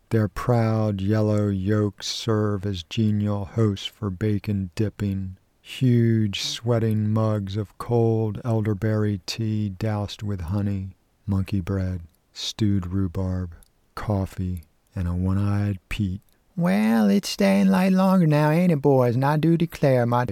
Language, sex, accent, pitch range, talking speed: English, male, American, 105-135 Hz, 130 wpm